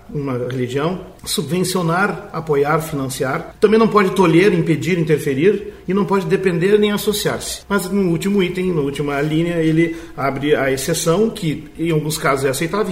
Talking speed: 160 wpm